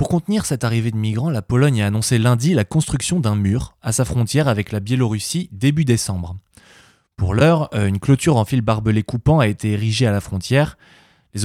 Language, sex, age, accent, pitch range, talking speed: French, male, 20-39, French, 105-135 Hz, 200 wpm